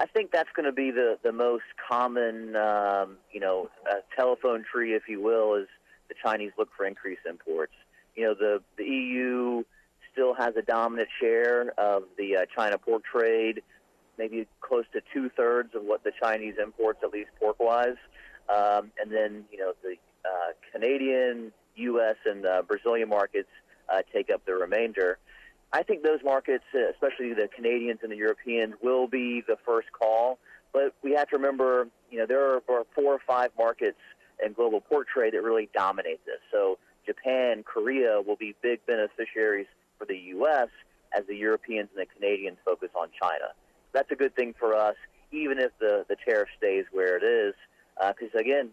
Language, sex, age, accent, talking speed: English, male, 30-49, American, 175 wpm